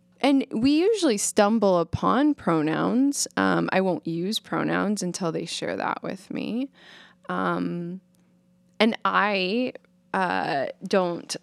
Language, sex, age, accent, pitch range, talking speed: English, female, 20-39, American, 170-240 Hz, 115 wpm